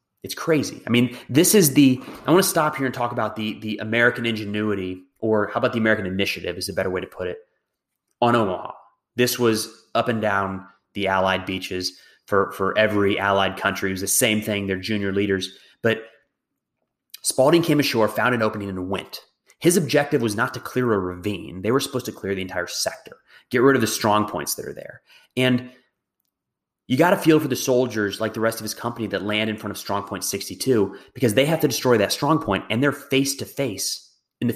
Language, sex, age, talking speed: English, male, 30-49, 215 wpm